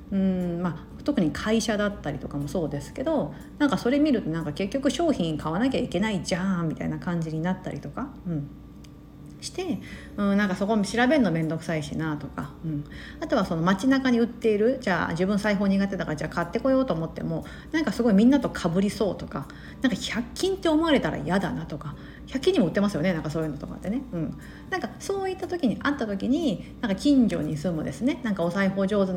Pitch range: 170-265 Hz